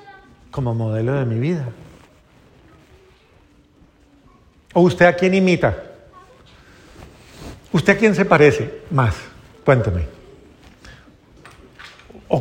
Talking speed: 85 wpm